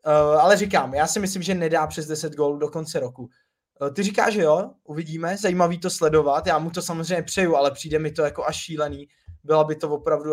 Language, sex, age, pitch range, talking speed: Czech, male, 20-39, 145-170 Hz, 225 wpm